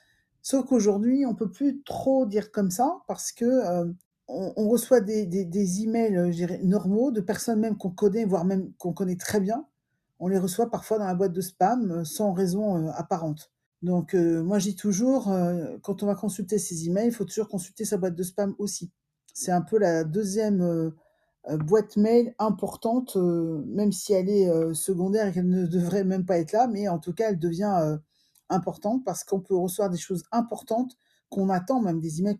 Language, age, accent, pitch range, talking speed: French, 50-69, French, 175-220 Hz, 205 wpm